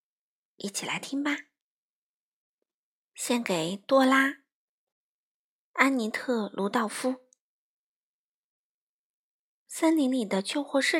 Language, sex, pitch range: Chinese, female, 210-290 Hz